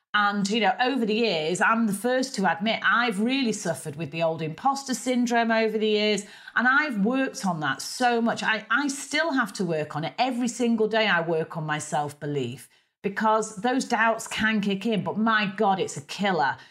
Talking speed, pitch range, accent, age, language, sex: 205 wpm, 170-235 Hz, British, 40-59, English, female